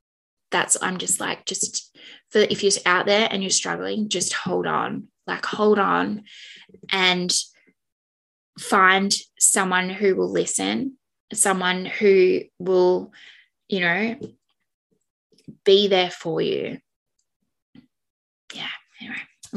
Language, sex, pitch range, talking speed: English, female, 185-260 Hz, 110 wpm